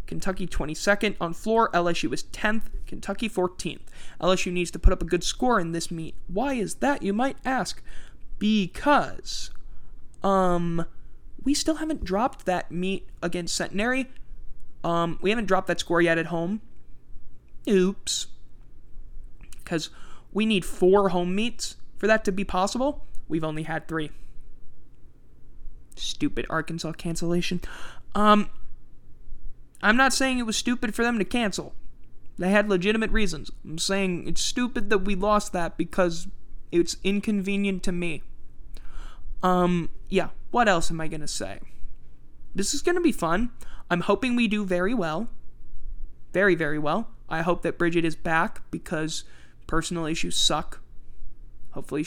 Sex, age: male, 20-39